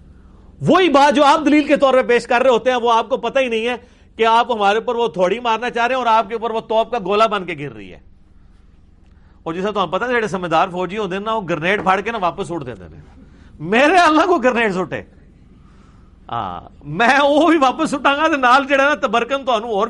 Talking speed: 225 wpm